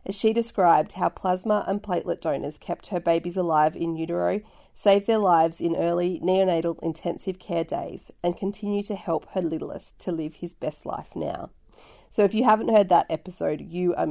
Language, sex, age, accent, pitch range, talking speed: English, female, 40-59, Australian, 165-195 Hz, 185 wpm